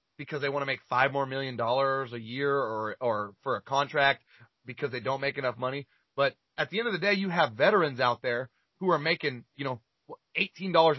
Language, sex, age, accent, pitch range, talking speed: English, male, 30-49, American, 135-175 Hz, 220 wpm